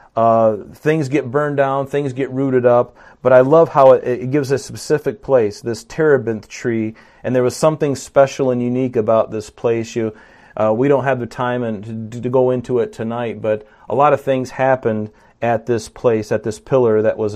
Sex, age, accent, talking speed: male, 40-59, American, 200 wpm